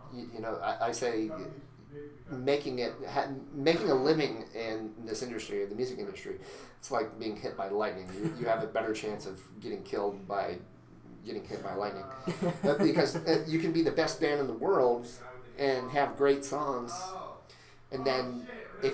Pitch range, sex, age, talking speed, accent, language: 110-135 Hz, male, 30-49, 175 wpm, American, English